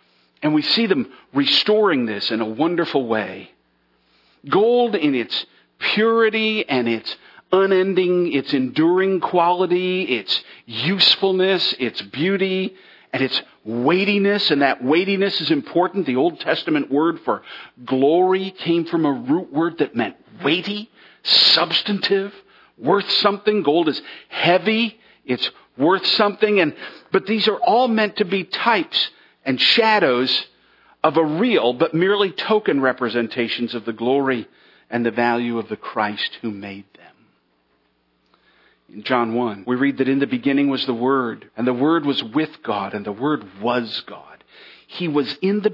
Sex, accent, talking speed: male, American, 145 wpm